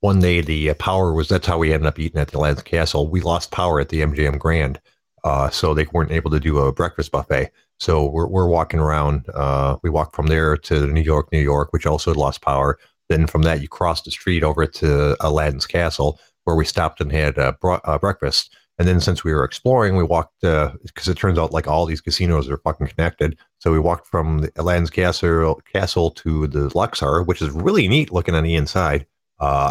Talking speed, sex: 220 wpm, male